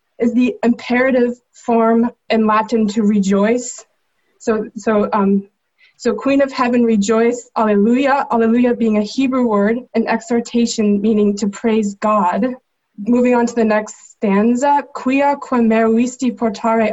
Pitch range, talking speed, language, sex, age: 215-245 Hz, 135 wpm, English, female, 20-39